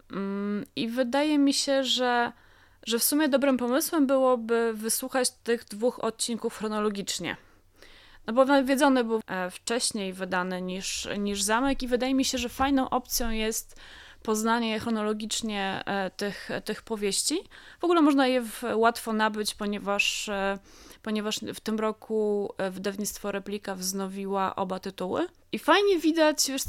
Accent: native